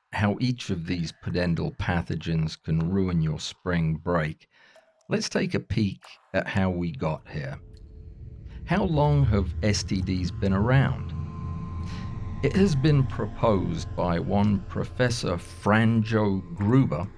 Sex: male